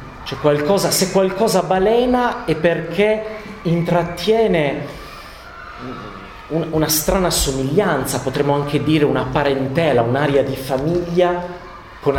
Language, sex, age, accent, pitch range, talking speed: Italian, male, 40-59, native, 120-170 Hz, 105 wpm